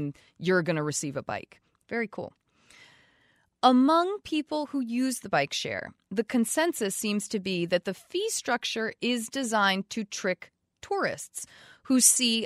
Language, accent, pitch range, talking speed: English, American, 175-240 Hz, 150 wpm